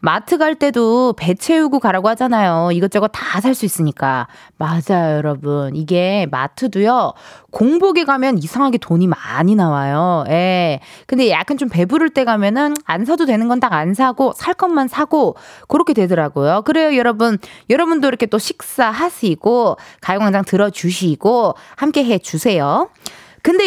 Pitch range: 185-310 Hz